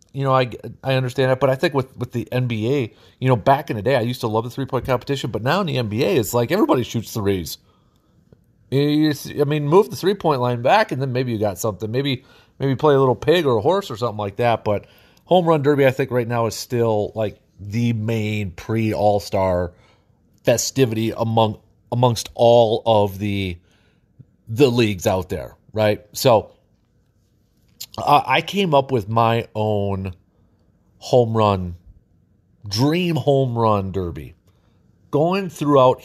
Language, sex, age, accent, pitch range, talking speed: English, male, 30-49, American, 105-130 Hz, 175 wpm